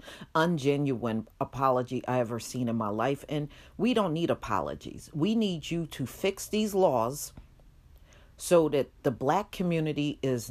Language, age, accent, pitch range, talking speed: English, 50-69, American, 115-160 Hz, 150 wpm